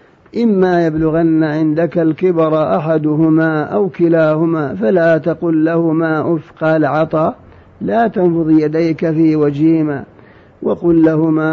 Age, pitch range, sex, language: 50-69, 155-180 Hz, male, Arabic